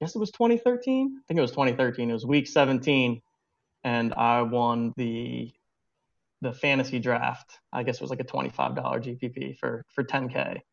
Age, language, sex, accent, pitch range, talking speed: 20-39, English, male, American, 120-135 Hz, 180 wpm